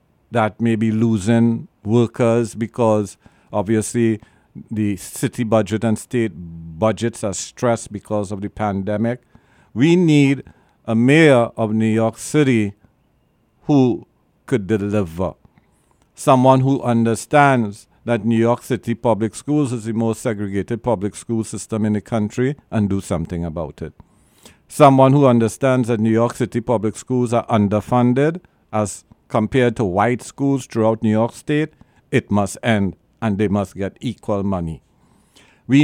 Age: 50-69